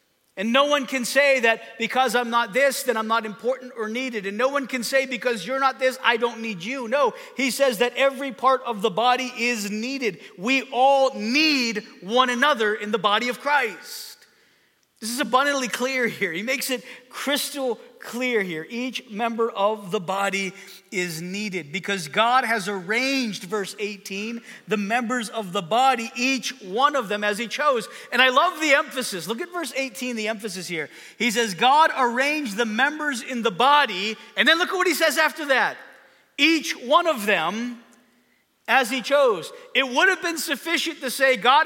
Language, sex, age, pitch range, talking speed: English, male, 40-59, 230-295 Hz, 190 wpm